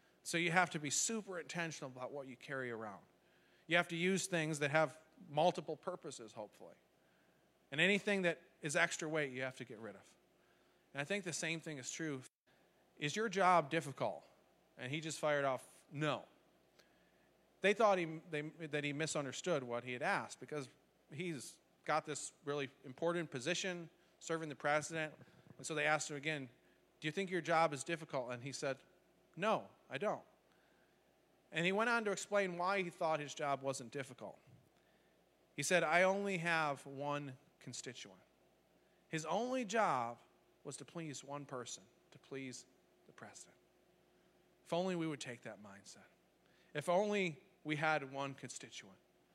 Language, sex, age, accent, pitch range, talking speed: English, male, 40-59, American, 135-170 Hz, 165 wpm